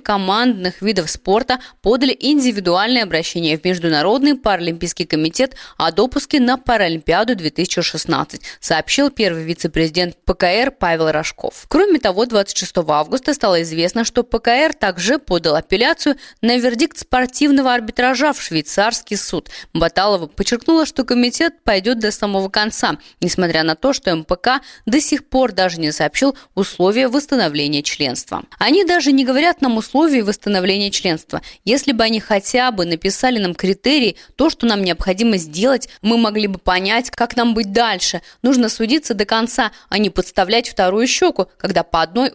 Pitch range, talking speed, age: 180-255 Hz, 145 wpm, 20-39